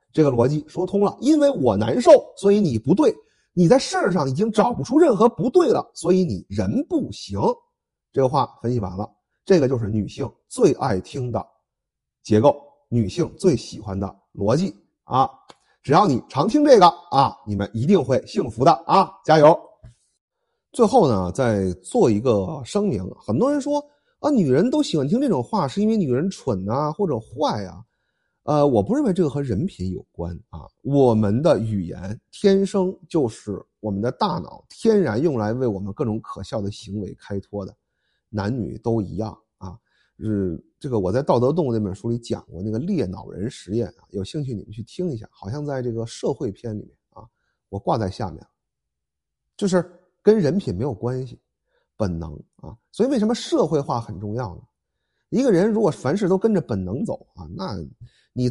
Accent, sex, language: native, male, Chinese